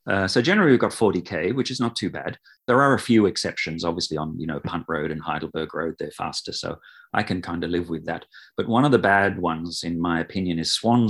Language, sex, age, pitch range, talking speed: English, male, 40-59, 85-110 Hz, 250 wpm